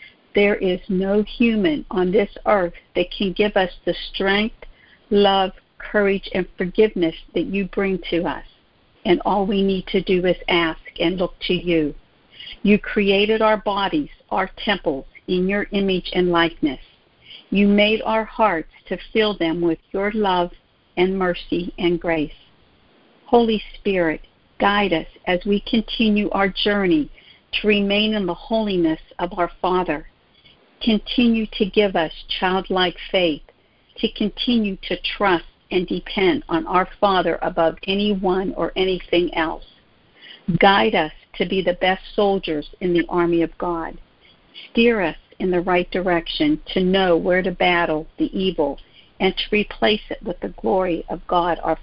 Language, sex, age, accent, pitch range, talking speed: English, female, 60-79, American, 175-205 Hz, 150 wpm